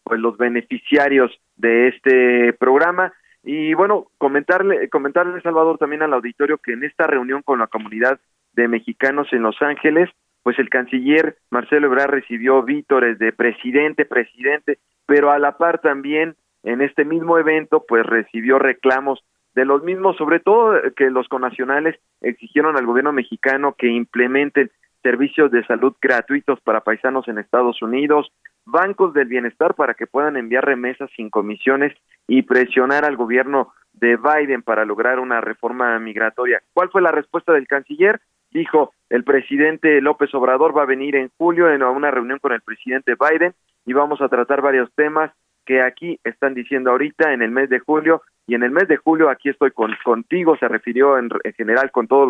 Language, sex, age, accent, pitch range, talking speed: Spanish, male, 40-59, Mexican, 125-155 Hz, 165 wpm